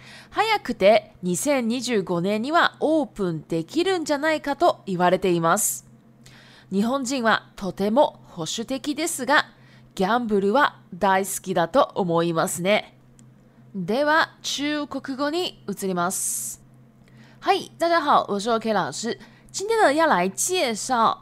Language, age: Japanese, 20-39